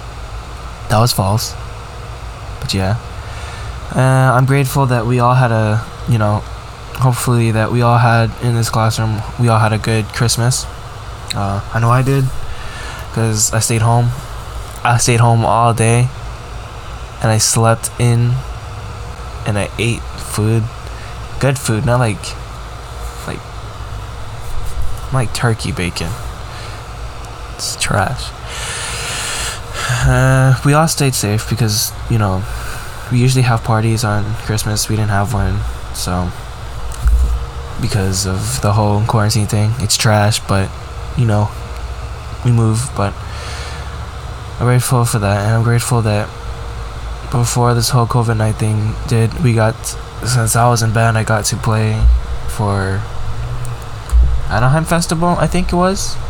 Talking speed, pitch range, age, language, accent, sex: 135 wpm, 105-120 Hz, 10-29, English, American, male